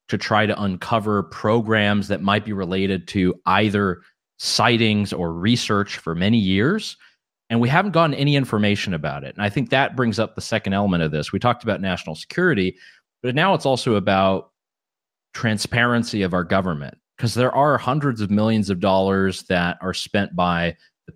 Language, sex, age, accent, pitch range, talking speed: English, male, 30-49, American, 90-110 Hz, 180 wpm